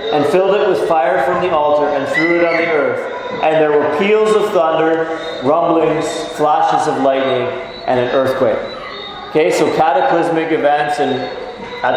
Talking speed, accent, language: 160 wpm, American, English